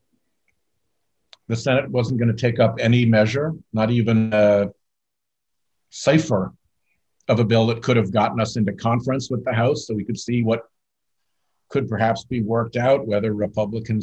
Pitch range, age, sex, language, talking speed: 105-125 Hz, 50-69, male, English, 160 wpm